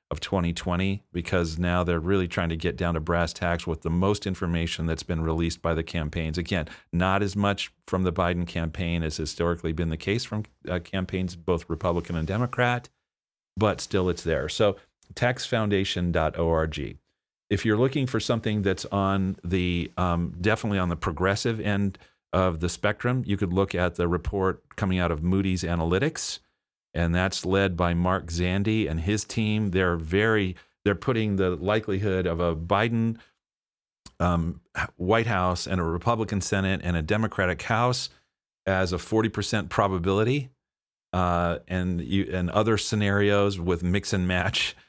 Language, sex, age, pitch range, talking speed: English, male, 40-59, 85-100 Hz, 160 wpm